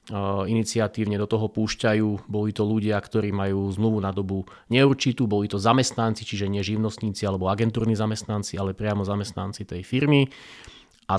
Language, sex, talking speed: Slovak, male, 150 wpm